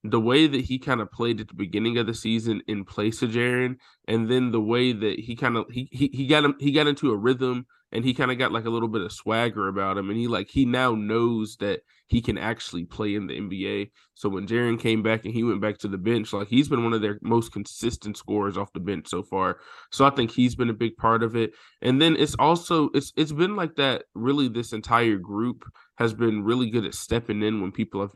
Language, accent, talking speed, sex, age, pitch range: English, American, 260 wpm, male, 20-39, 105-120 Hz